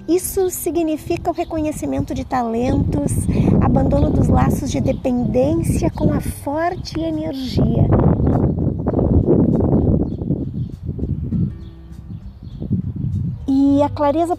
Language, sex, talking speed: Portuguese, female, 75 wpm